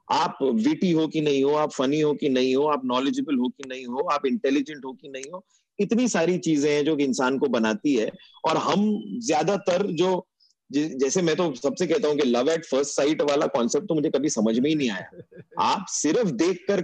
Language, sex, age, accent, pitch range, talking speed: Hindi, male, 30-49, native, 130-175 Hz, 185 wpm